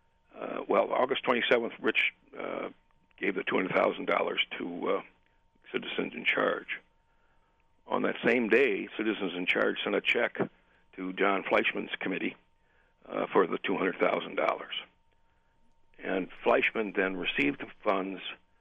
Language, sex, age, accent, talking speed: English, male, 60-79, American, 125 wpm